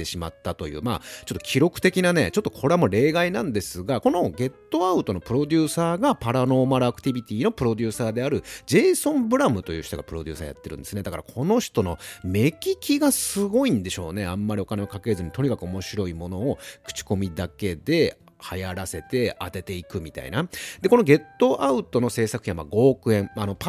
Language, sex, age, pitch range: Japanese, male, 40-59, 95-155 Hz